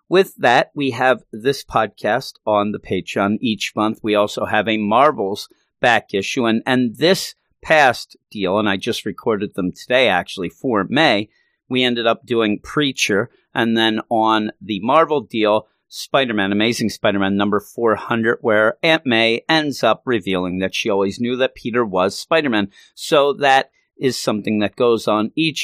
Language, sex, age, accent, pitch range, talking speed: English, male, 50-69, American, 105-135 Hz, 165 wpm